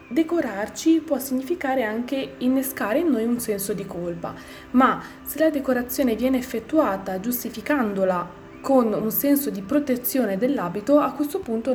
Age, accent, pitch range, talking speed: 20-39, native, 200-260 Hz, 140 wpm